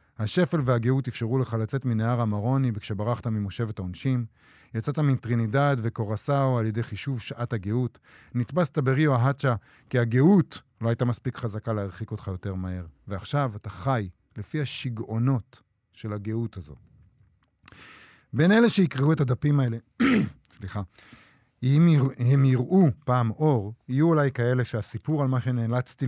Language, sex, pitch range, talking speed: Hebrew, male, 110-140 Hz, 135 wpm